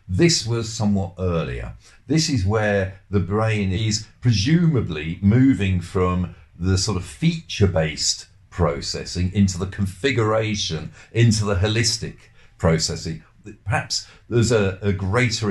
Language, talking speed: English, 115 wpm